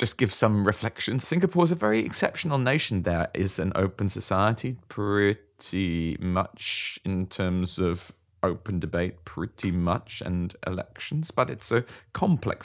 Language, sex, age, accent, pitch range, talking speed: English, male, 30-49, British, 95-125 Hz, 140 wpm